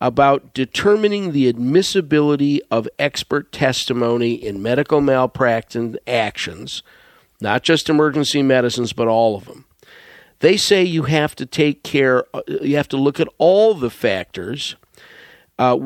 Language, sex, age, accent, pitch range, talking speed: English, male, 50-69, American, 125-160 Hz, 130 wpm